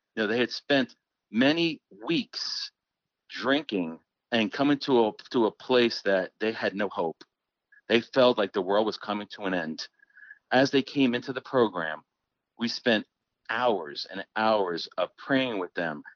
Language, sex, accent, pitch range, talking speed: English, male, American, 110-140 Hz, 165 wpm